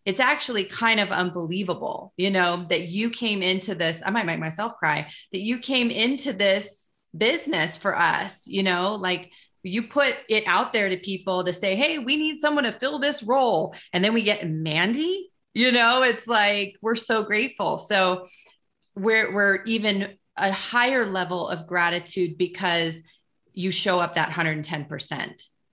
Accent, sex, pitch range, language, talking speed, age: American, female, 180-245 Hz, English, 170 wpm, 30-49